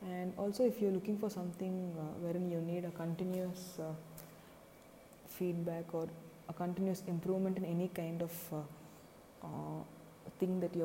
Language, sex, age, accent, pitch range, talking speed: English, female, 20-39, Indian, 165-195 Hz, 160 wpm